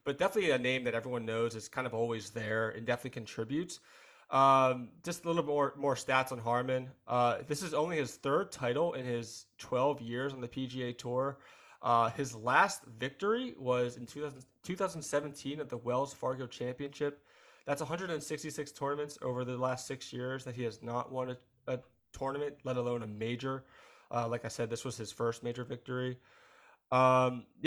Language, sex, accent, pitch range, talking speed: English, male, American, 120-145 Hz, 180 wpm